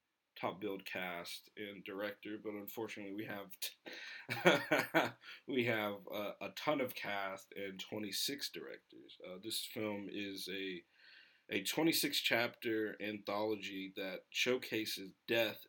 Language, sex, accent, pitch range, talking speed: English, male, American, 95-115 Hz, 120 wpm